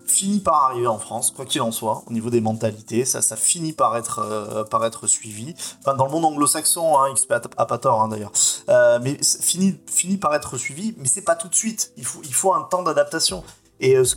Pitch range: 115-165 Hz